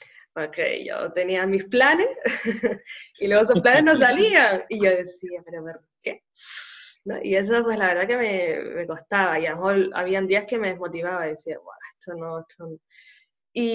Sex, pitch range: female, 185-255 Hz